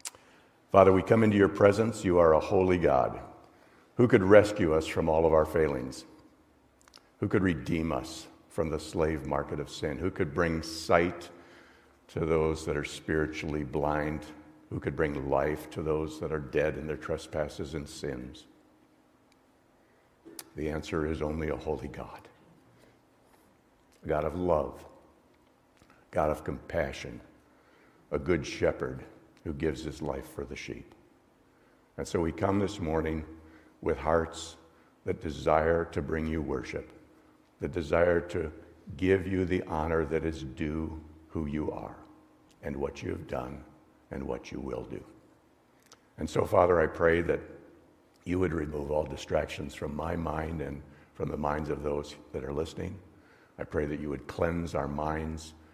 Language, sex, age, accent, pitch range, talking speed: English, male, 60-79, American, 75-90 Hz, 155 wpm